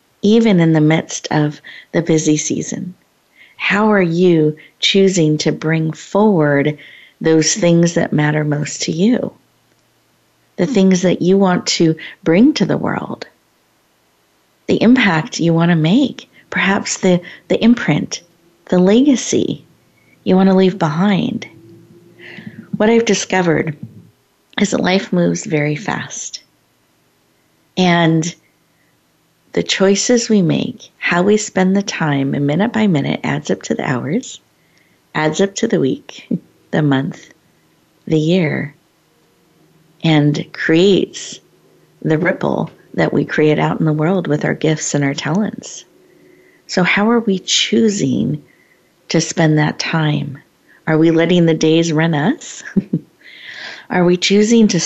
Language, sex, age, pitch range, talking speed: English, female, 50-69, 155-195 Hz, 135 wpm